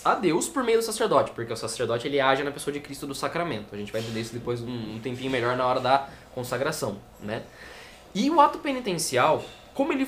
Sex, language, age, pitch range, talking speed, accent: male, Portuguese, 10-29, 145-220 Hz, 220 wpm, Brazilian